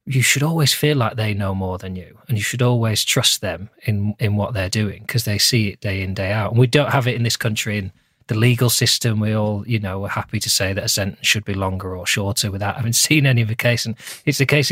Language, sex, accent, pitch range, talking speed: English, male, British, 100-125 Hz, 275 wpm